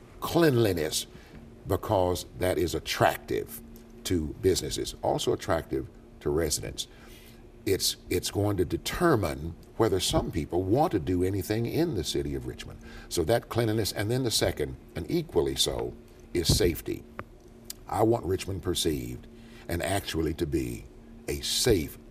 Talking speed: 135 wpm